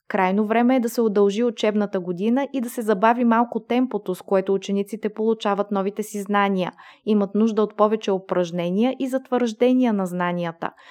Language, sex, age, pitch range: Bulgarian, female, 20-39, 200-245 Hz